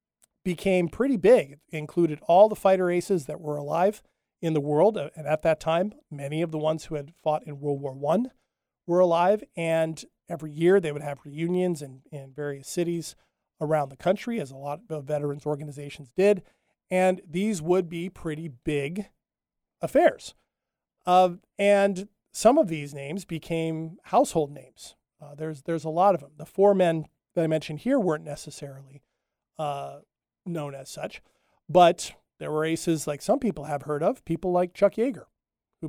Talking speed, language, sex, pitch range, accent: 175 wpm, English, male, 145-180 Hz, American